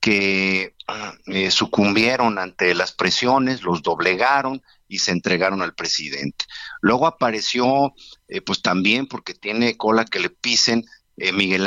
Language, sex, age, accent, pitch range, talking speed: Spanish, male, 50-69, Mexican, 95-125 Hz, 135 wpm